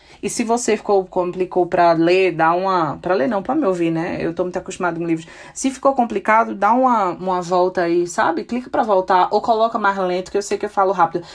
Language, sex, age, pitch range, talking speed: Portuguese, female, 20-39, 170-225 Hz, 240 wpm